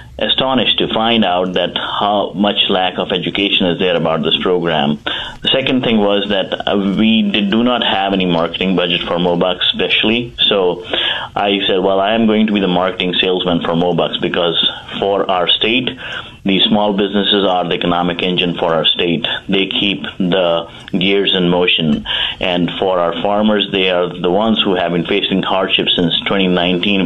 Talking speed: 180 wpm